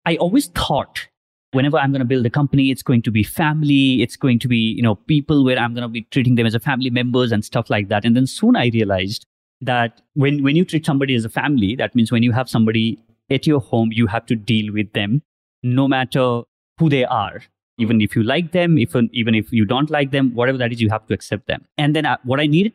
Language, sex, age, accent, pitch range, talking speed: English, male, 30-49, Indian, 110-140 Hz, 255 wpm